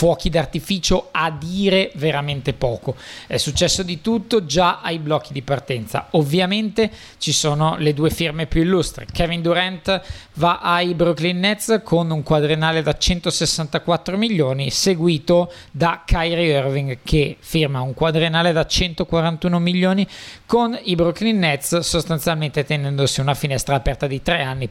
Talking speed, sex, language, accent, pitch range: 140 wpm, male, Italian, native, 145-180 Hz